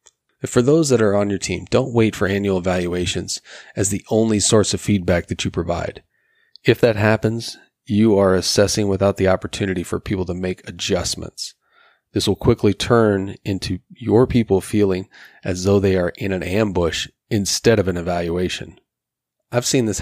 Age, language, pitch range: 30-49, English, 95-110 Hz